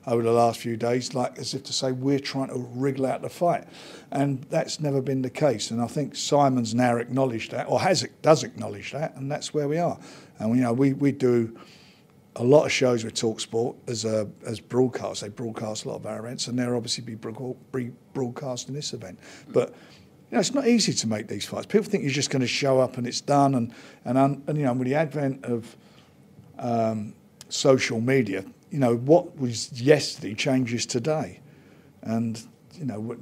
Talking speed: 210 wpm